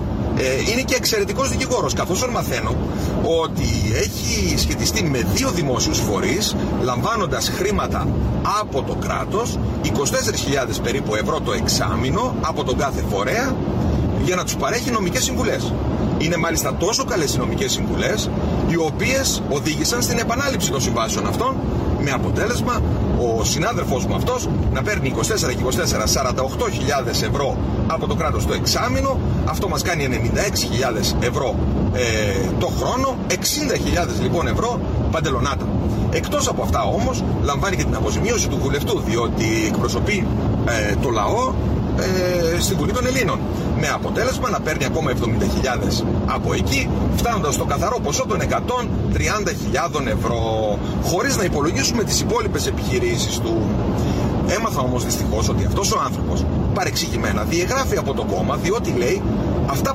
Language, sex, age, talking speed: Greek, male, 40-59, 130 wpm